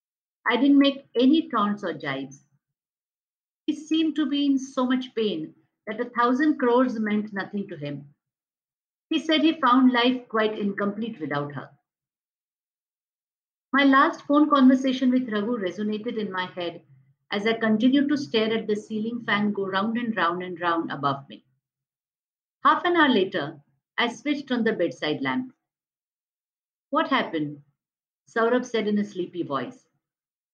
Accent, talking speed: native, 150 wpm